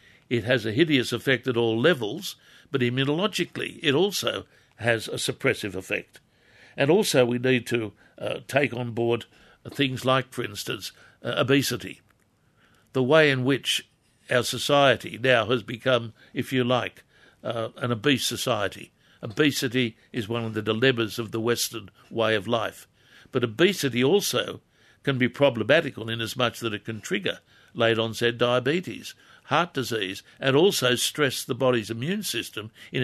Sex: male